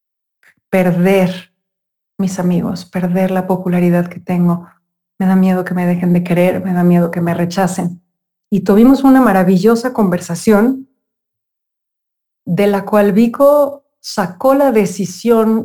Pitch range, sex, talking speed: 175-210 Hz, female, 130 wpm